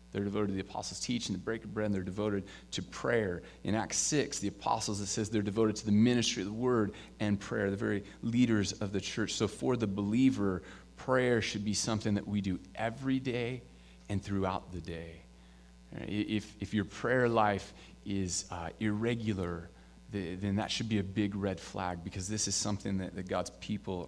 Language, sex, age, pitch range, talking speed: English, male, 30-49, 90-110 Hz, 195 wpm